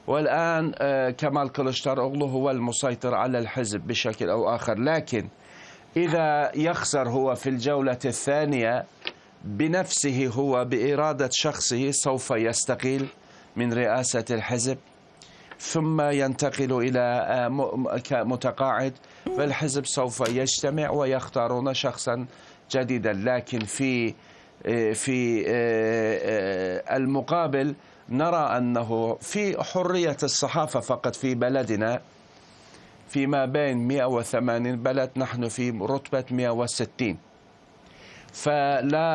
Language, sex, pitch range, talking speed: Arabic, male, 120-140 Hz, 90 wpm